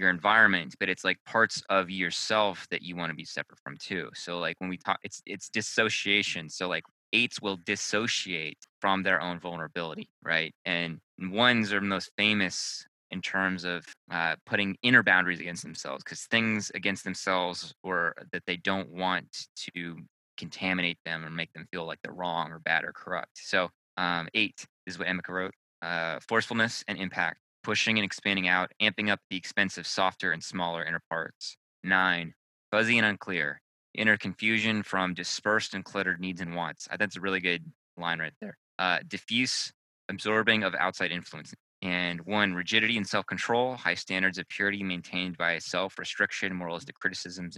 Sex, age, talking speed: male, 20-39, 175 wpm